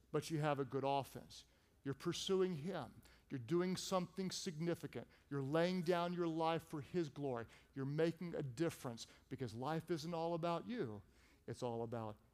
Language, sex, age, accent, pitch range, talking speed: English, male, 50-69, American, 130-180 Hz, 165 wpm